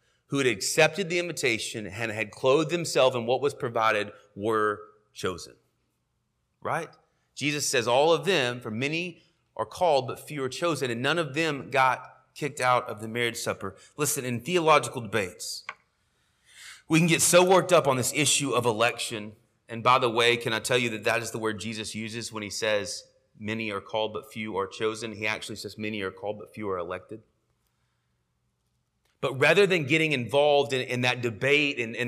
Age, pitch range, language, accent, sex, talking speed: 30-49, 120-170 Hz, English, American, male, 190 wpm